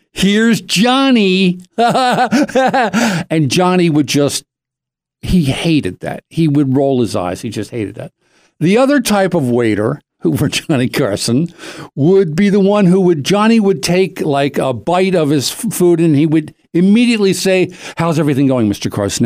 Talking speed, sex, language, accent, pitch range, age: 160 wpm, male, English, American, 125-185 Hz, 60-79